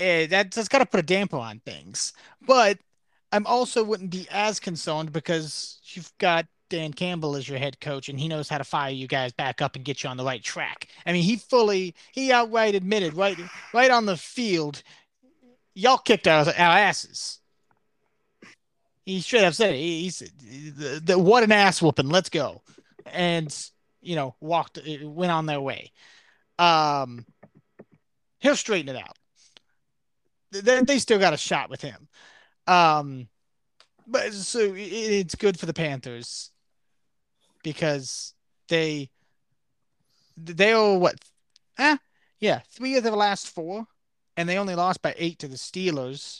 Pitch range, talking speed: 145-200 Hz, 160 wpm